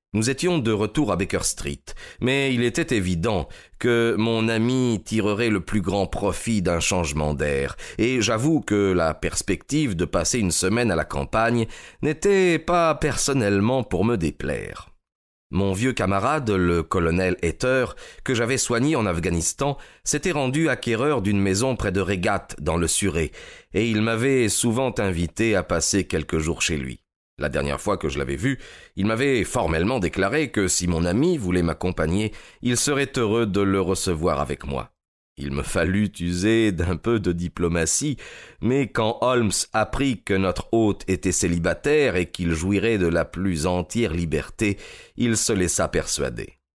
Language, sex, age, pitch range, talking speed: French, male, 30-49, 85-120 Hz, 165 wpm